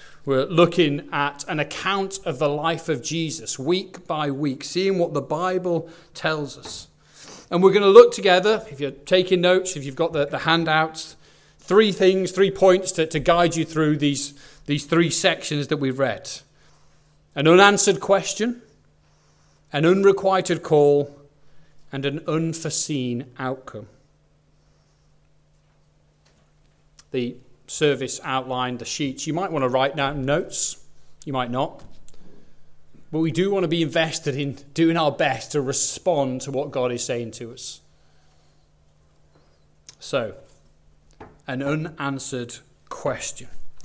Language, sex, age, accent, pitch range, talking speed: English, male, 40-59, British, 140-175 Hz, 135 wpm